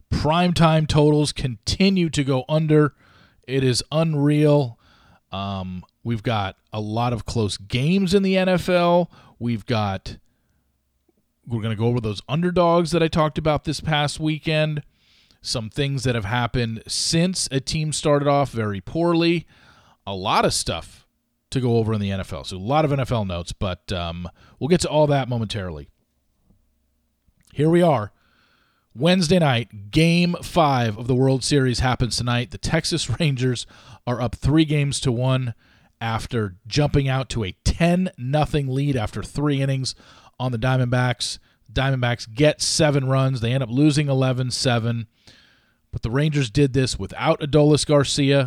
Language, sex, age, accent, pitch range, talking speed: English, male, 40-59, American, 110-150 Hz, 155 wpm